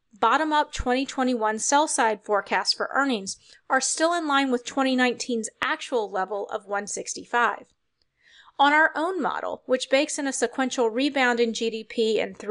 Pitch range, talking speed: 220-280 Hz, 140 wpm